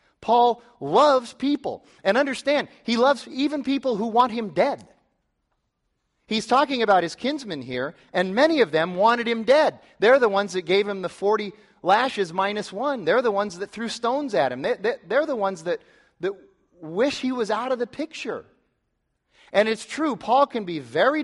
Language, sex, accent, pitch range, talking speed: English, male, American, 145-230 Hz, 180 wpm